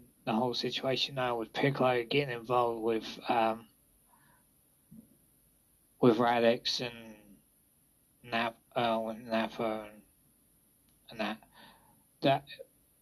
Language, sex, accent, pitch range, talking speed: English, male, British, 110-130 Hz, 95 wpm